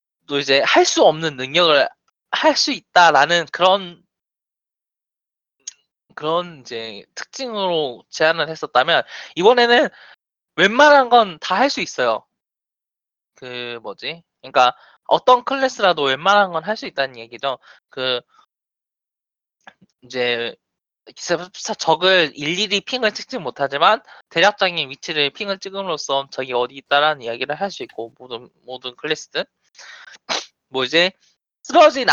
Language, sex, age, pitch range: Korean, male, 20-39, 130-205 Hz